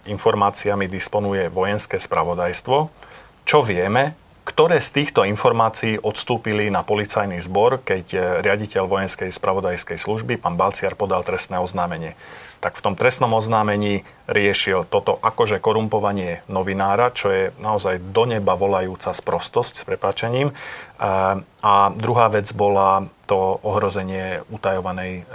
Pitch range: 95-115 Hz